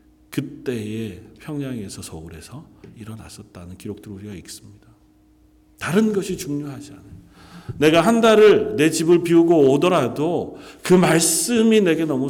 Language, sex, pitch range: Korean, male, 105-150 Hz